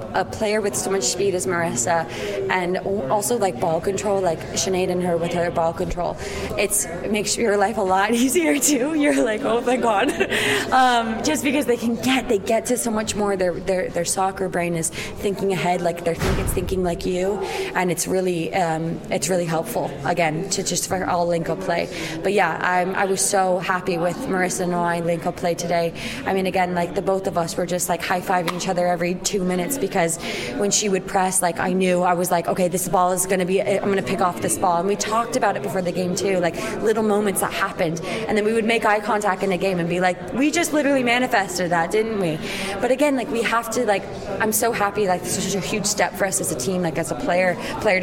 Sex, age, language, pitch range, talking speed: female, 20-39, English, 175-205 Hz, 240 wpm